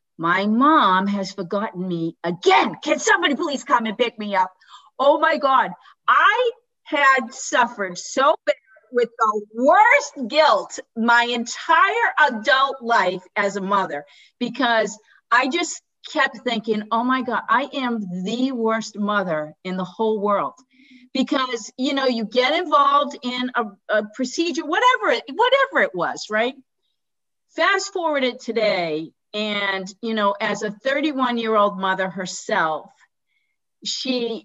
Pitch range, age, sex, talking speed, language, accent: 205-270 Hz, 50-69, female, 140 wpm, English, American